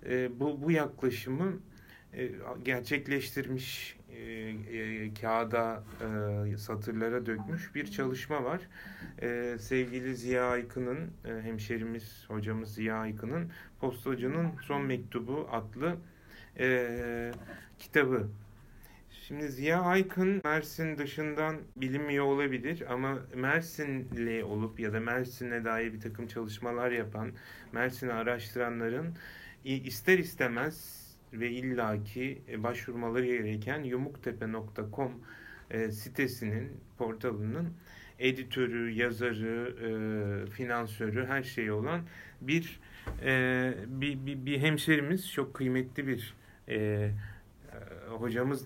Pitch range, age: 110-135 Hz, 30-49